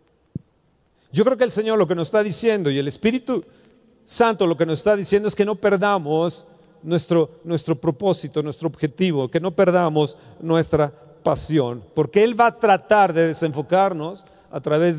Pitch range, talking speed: 150-205 Hz, 170 wpm